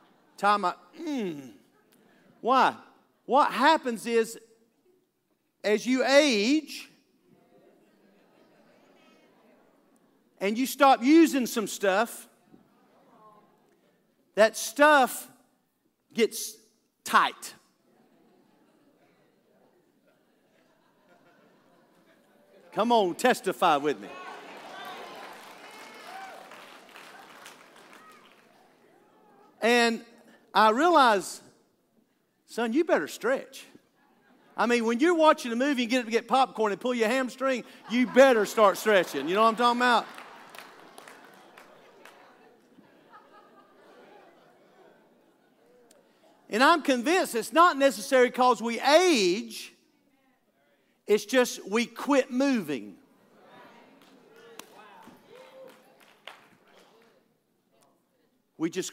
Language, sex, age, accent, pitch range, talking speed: English, male, 50-69, American, 225-285 Hz, 75 wpm